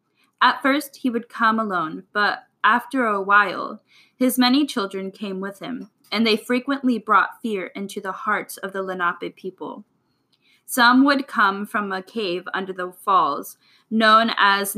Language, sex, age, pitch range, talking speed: English, female, 10-29, 195-235 Hz, 160 wpm